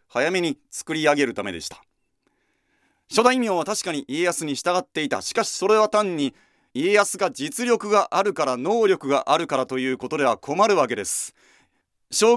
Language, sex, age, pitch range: Japanese, male, 40-59, 130-200 Hz